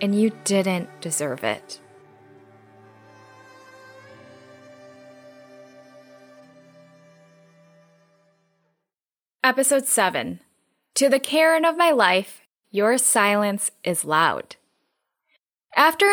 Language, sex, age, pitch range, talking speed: English, female, 10-29, 180-245 Hz, 65 wpm